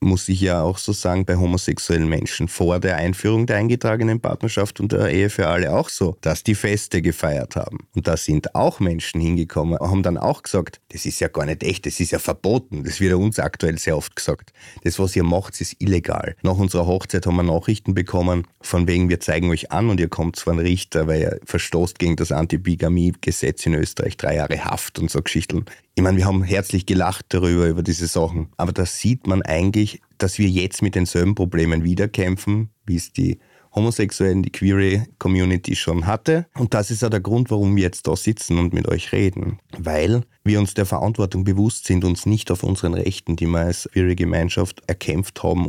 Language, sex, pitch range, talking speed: German, male, 85-100 Hz, 210 wpm